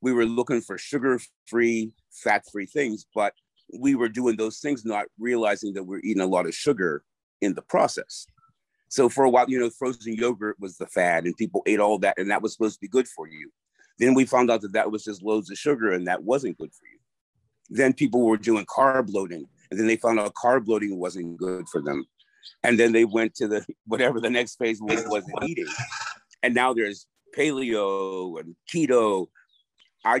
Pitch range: 105-130 Hz